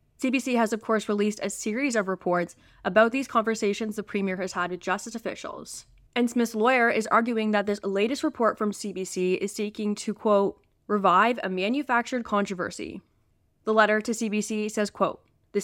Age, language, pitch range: 10-29, English, 190-230 Hz